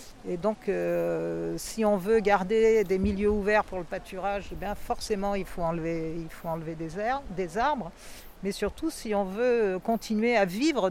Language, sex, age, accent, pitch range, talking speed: French, female, 50-69, French, 185-230 Hz, 185 wpm